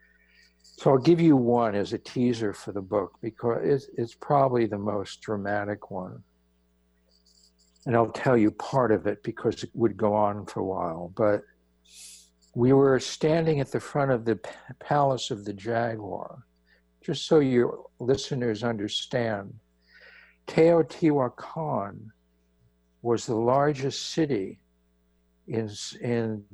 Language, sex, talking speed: English, male, 135 wpm